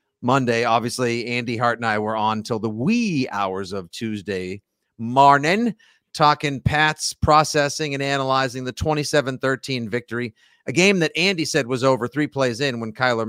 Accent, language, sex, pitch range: American, English, male, 115-145 Hz